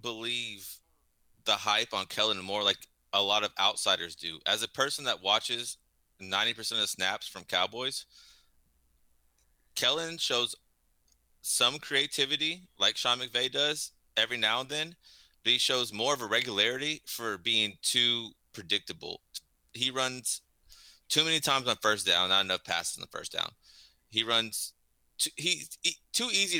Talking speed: 155 wpm